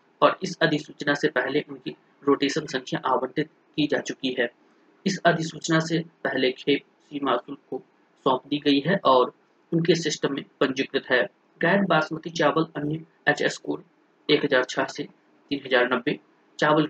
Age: 30-49